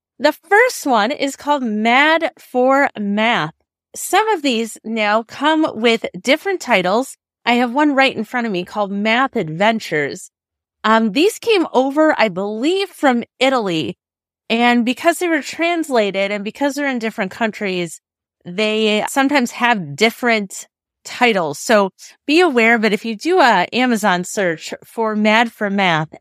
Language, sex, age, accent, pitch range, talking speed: English, female, 30-49, American, 205-285 Hz, 150 wpm